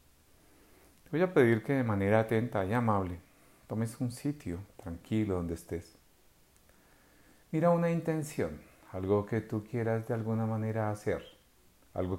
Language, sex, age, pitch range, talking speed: Spanish, male, 50-69, 90-125 Hz, 135 wpm